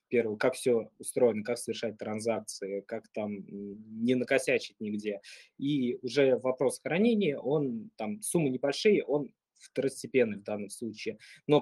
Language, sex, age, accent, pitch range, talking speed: Russian, male, 20-39, native, 110-145 Hz, 135 wpm